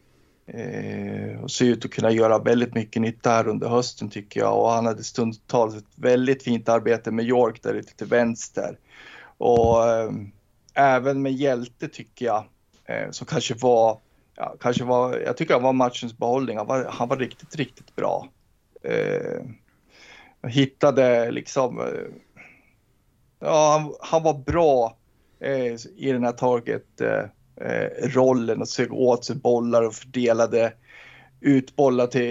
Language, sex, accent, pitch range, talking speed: Swedish, male, native, 115-130 Hz, 150 wpm